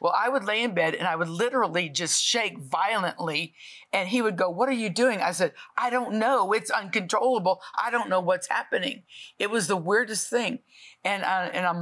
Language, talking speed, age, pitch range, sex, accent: English, 210 wpm, 50-69, 170-220 Hz, female, American